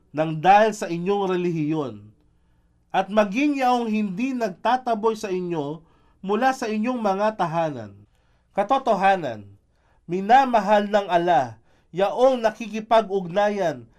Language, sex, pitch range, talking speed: Filipino, male, 160-230 Hz, 100 wpm